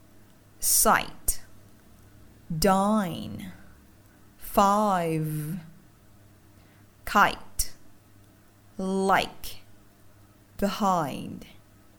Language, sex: Vietnamese, female